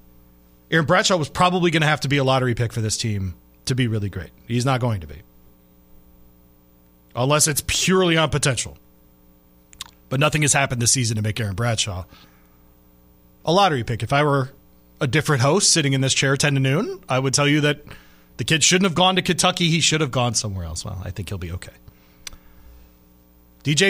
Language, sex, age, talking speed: English, male, 40-59, 200 wpm